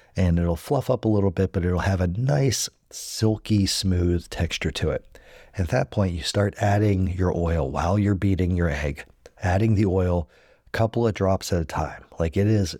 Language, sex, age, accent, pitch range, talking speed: English, male, 40-59, American, 85-105 Hz, 200 wpm